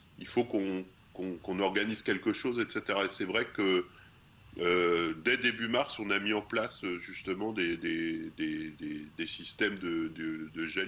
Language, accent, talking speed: French, French, 190 wpm